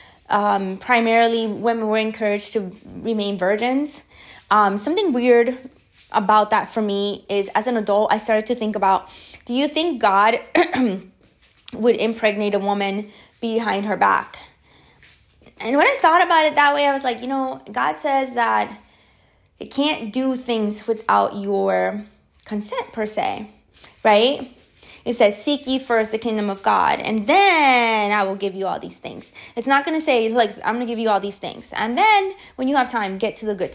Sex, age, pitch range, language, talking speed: female, 20-39, 205-260 Hz, English, 180 wpm